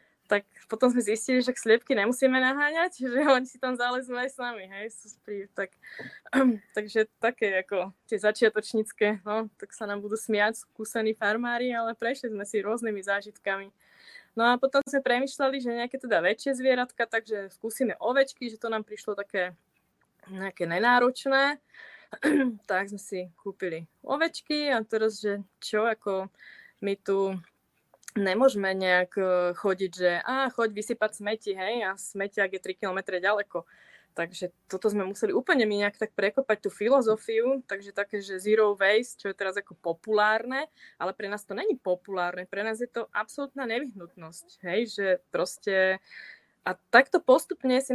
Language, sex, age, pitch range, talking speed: Czech, female, 20-39, 200-245 Hz, 155 wpm